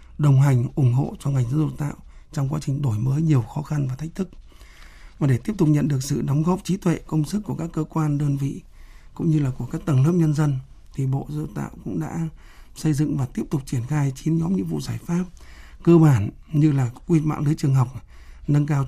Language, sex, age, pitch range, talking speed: Vietnamese, male, 60-79, 130-155 Hz, 250 wpm